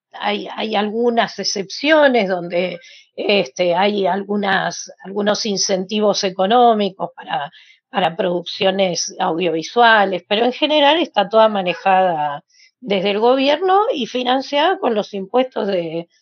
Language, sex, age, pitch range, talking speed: Spanish, female, 40-59, 190-240 Hz, 105 wpm